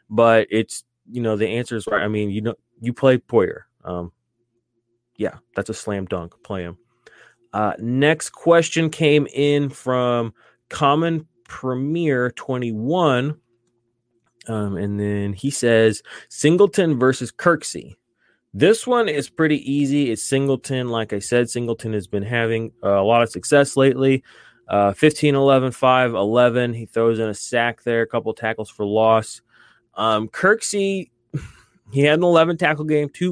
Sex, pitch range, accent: male, 110-140 Hz, American